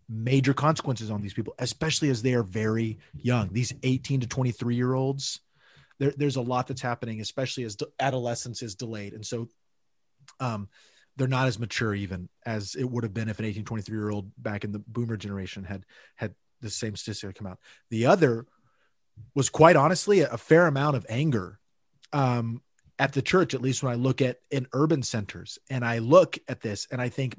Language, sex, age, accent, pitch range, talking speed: English, male, 30-49, American, 115-140 Hz, 195 wpm